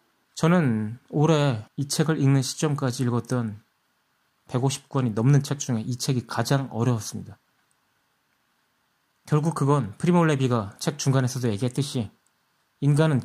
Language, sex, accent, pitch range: Korean, male, native, 120-150 Hz